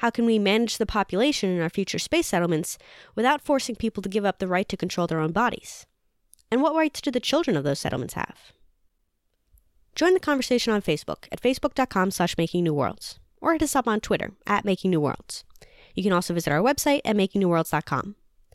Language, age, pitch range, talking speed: English, 20-39, 170-230 Hz, 200 wpm